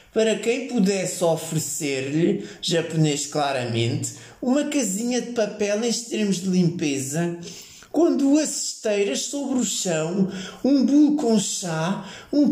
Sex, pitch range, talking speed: male, 160-225 Hz, 120 wpm